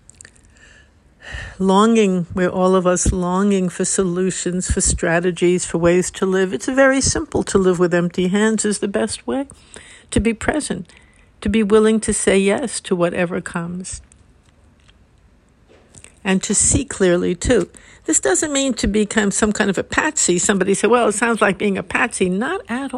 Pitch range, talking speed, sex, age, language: 185-230 Hz, 165 wpm, female, 60-79, English